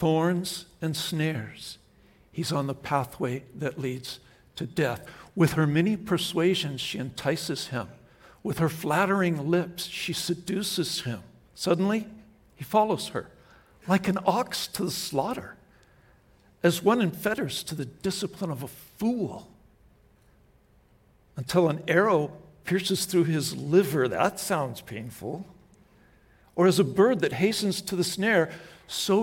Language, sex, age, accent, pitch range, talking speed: English, male, 60-79, American, 135-180 Hz, 135 wpm